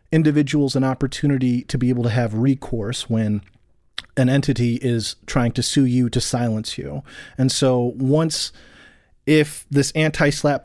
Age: 30-49